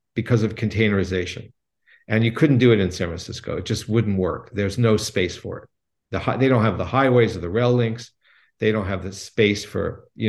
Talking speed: 210 wpm